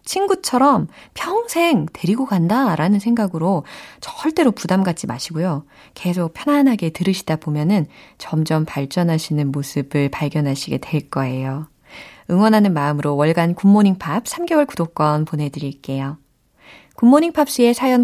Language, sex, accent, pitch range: Korean, female, native, 150-235 Hz